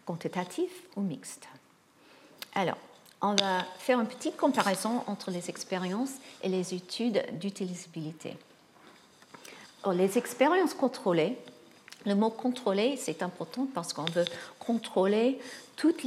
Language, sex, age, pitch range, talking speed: French, female, 50-69, 185-240 Hz, 115 wpm